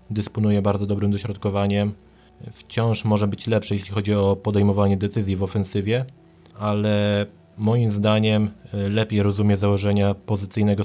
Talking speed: 120 wpm